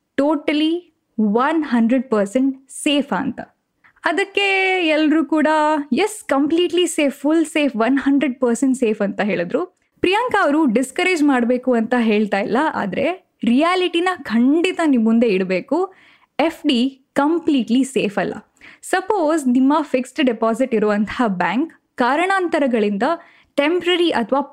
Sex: female